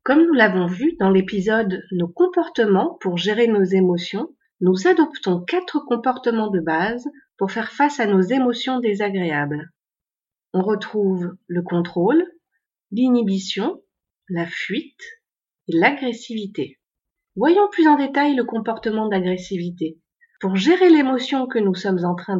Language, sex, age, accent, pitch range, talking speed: French, female, 40-59, French, 190-300 Hz, 135 wpm